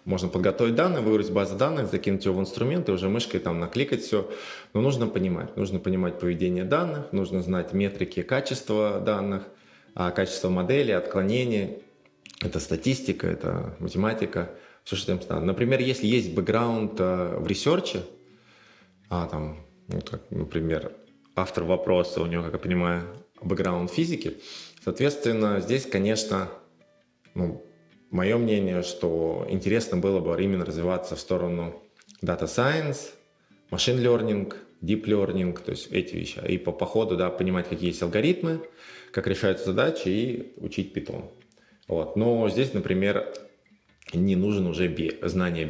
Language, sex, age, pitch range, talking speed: Russian, male, 20-39, 90-110 Hz, 135 wpm